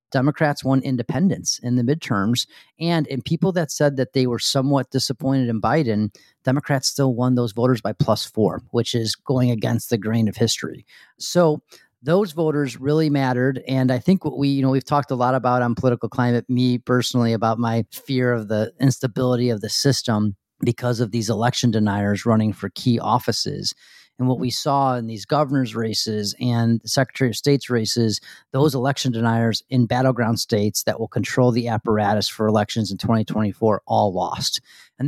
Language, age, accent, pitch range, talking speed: English, 40-59, American, 115-140 Hz, 180 wpm